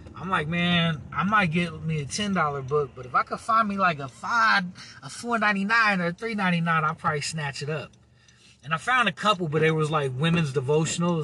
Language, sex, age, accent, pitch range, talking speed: English, male, 30-49, American, 135-180 Hz, 215 wpm